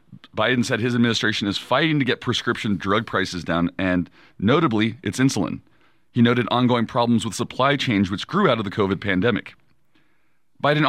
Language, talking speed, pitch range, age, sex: English, 170 wpm, 105-140 Hz, 30-49, male